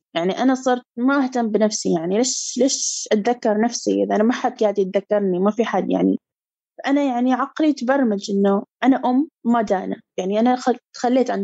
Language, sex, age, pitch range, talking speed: Arabic, female, 20-39, 200-250 Hz, 185 wpm